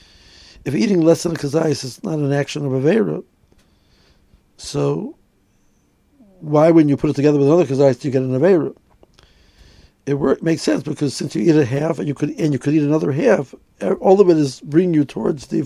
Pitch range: 125-160 Hz